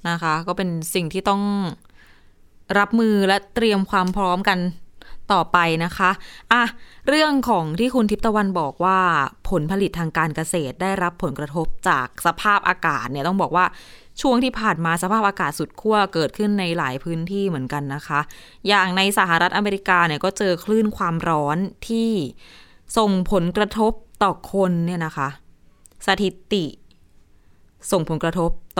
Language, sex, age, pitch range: Thai, female, 20-39, 155-205 Hz